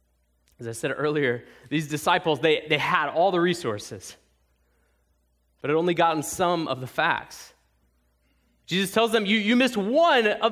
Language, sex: English, male